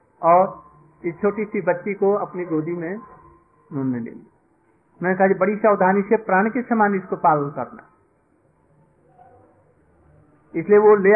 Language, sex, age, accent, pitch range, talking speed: Hindi, male, 50-69, native, 150-205 Hz, 130 wpm